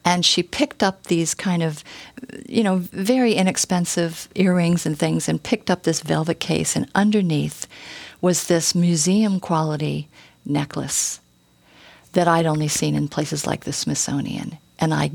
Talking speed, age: 145 wpm, 50-69